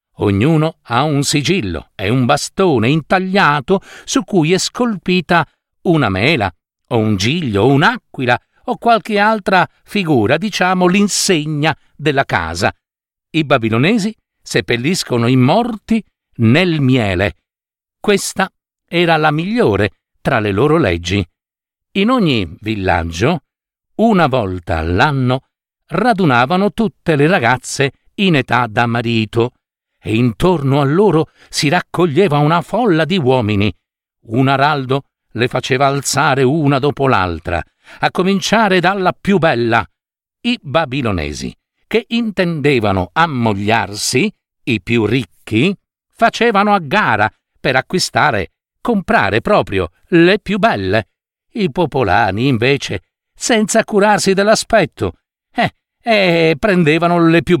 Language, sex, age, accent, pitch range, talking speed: Italian, male, 50-69, native, 120-190 Hz, 115 wpm